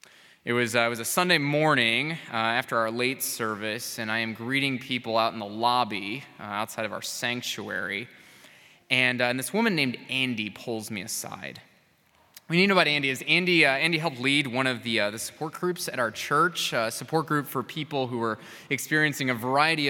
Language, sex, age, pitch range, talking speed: English, male, 20-39, 120-165 Hz, 210 wpm